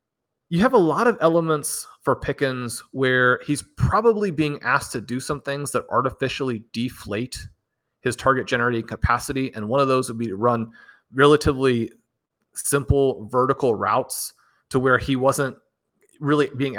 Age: 30-49